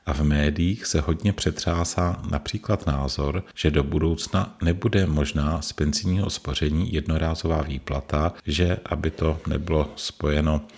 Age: 40-59